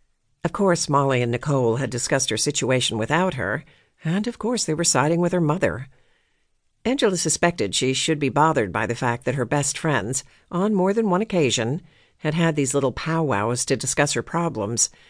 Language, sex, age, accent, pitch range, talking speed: English, female, 50-69, American, 125-165 Hz, 185 wpm